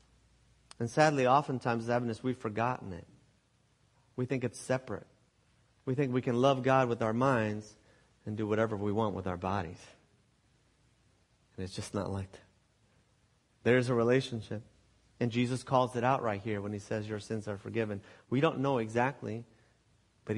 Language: English